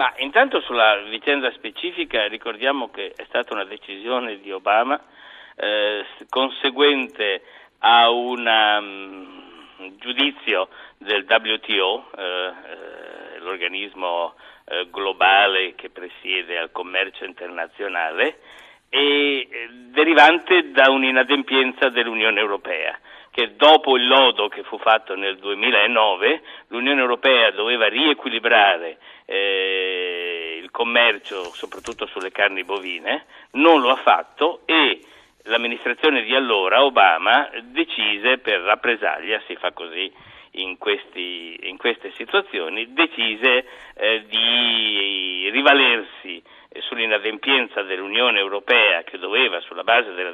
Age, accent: 60-79, native